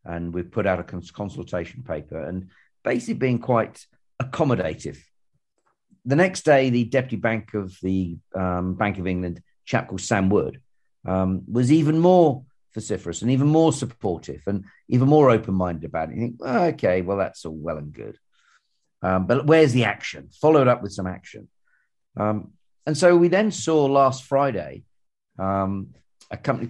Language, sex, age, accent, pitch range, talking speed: English, male, 50-69, British, 90-125 Hz, 175 wpm